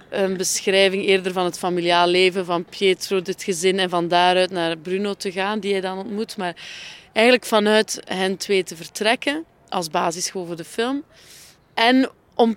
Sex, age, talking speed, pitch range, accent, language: female, 20-39, 170 wpm, 205-240 Hz, Dutch, Dutch